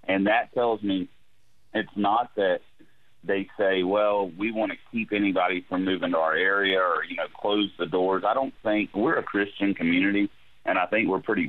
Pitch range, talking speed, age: 85-105 Hz, 200 wpm, 40-59